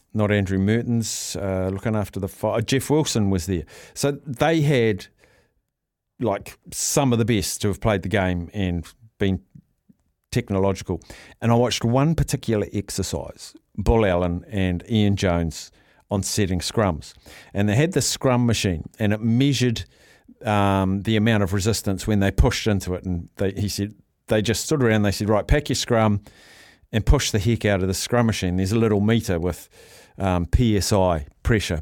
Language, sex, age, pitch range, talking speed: English, male, 50-69, 95-115 Hz, 170 wpm